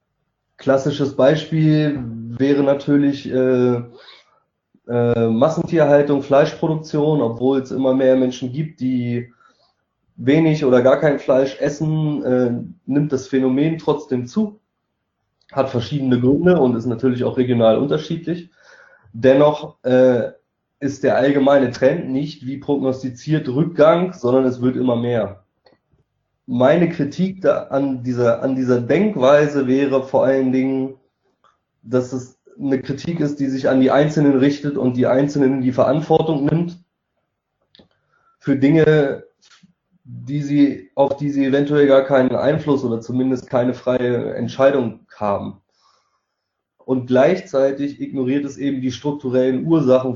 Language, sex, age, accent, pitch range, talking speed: German, male, 20-39, German, 125-145 Hz, 125 wpm